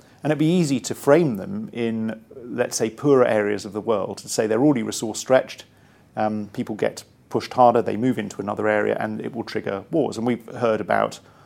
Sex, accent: male, British